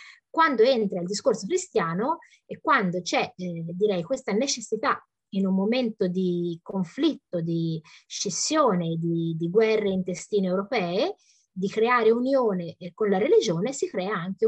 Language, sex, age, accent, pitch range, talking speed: Italian, female, 20-39, native, 175-250 Hz, 135 wpm